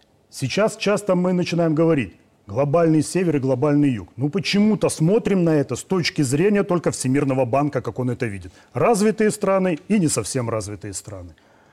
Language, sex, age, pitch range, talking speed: Russian, male, 40-59, 125-170 Hz, 175 wpm